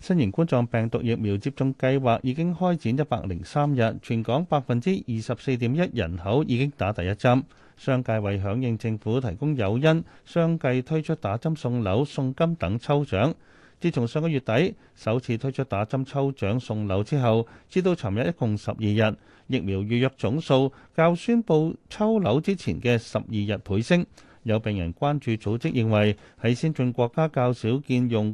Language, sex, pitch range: Chinese, male, 110-150 Hz